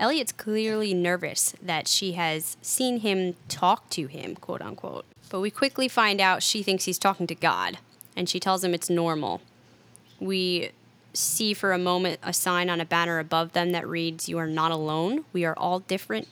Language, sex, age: English, female, 10-29